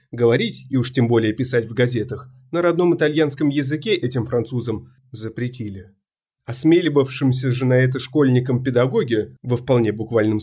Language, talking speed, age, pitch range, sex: Russian, 140 wpm, 30-49, 115-150 Hz, male